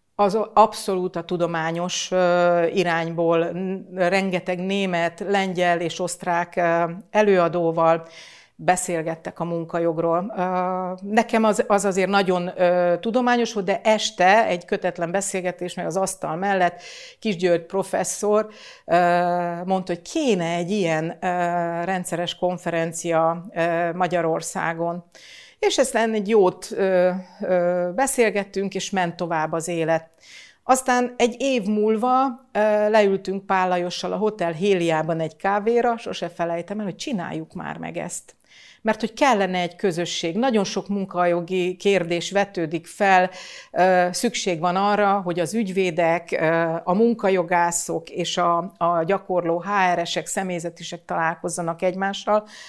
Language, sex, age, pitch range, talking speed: Hungarian, female, 60-79, 175-200 Hz, 110 wpm